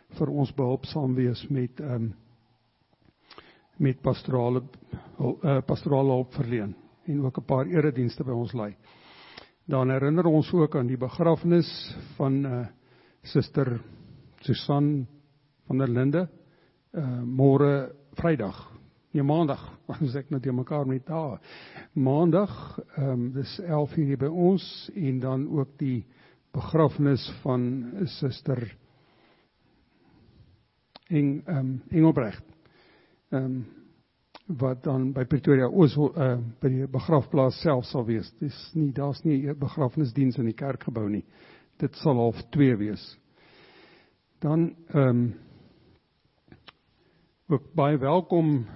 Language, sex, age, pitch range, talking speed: English, male, 60-79, 125-155 Hz, 115 wpm